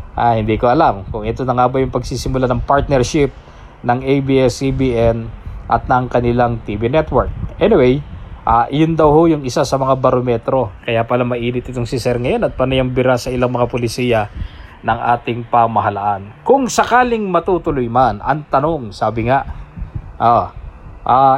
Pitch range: 120-150 Hz